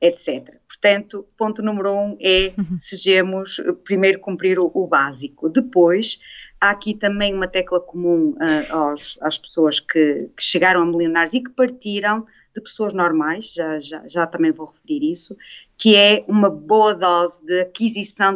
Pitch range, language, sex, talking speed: 170-210 Hz, Portuguese, female, 145 wpm